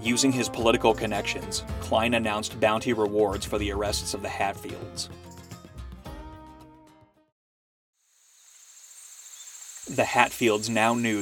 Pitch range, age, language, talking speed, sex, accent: 100-115 Hz, 30-49, English, 95 wpm, male, American